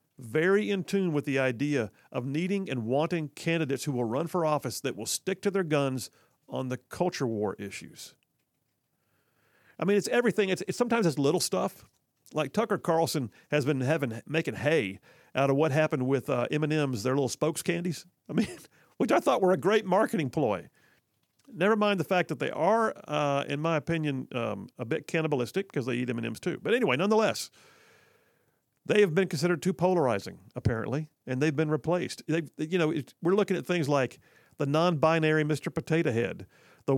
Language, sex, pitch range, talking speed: English, male, 135-175 Hz, 185 wpm